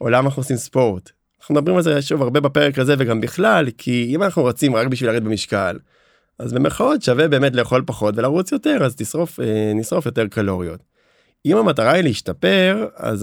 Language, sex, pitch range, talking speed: Hebrew, male, 105-135 Hz, 185 wpm